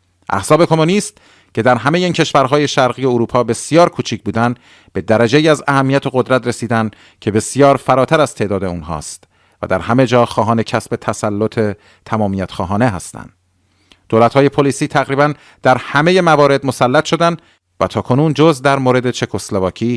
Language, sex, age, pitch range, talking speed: Persian, male, 40-59, 105-140 Hz, 145 wpm